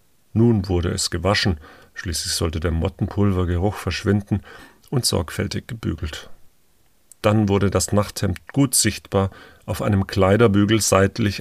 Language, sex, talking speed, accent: German, male, 115 wpm, German